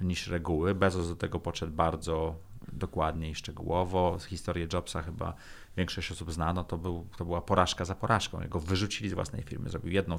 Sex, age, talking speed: male, 30-49, 175 wpm